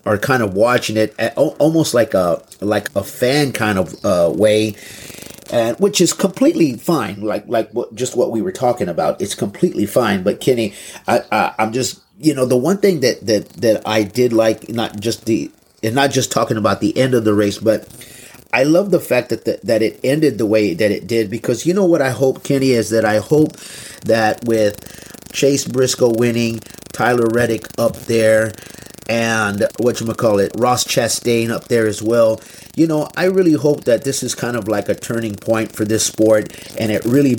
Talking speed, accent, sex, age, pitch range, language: 205 wpm, American, male, 30-49, 110-130 Hz, English